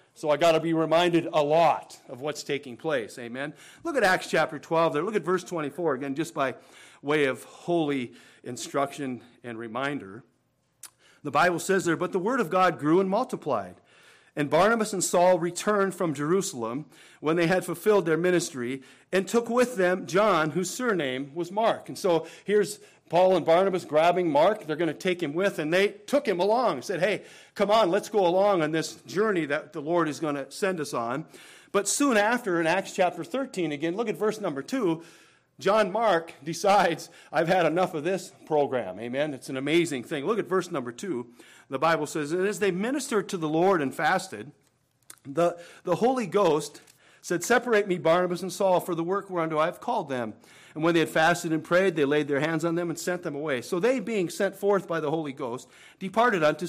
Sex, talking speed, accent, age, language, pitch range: male, 205 wpm, American, 40-59, English, 150-190 Hz